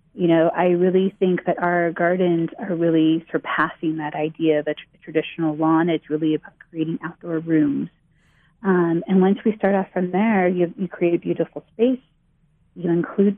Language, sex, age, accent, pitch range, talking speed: English, female, 30-49, American, 160-185 Hz, 180 wpm